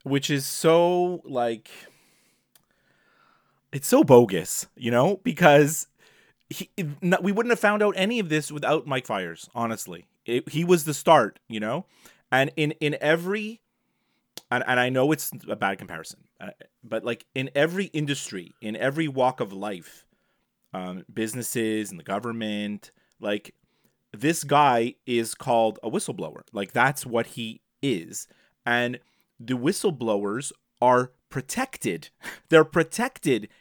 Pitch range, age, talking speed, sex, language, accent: 115-155 Hz, 30-49, 135 wpm, male, English, American